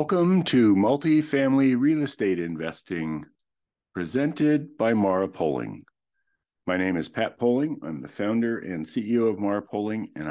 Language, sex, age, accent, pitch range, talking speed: English, male, 50-69, American, 90-130 Hz, 140 wpm